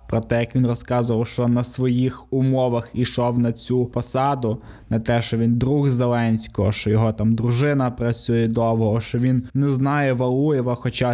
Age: 20-39